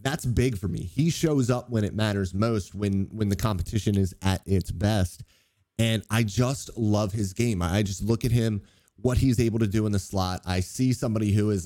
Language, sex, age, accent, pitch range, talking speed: English, male, 30-49, American, 100-125 Hz, 220 wpm